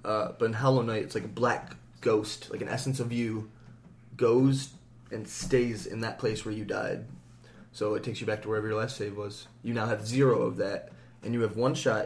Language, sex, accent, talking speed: English, male, American, 230 wpm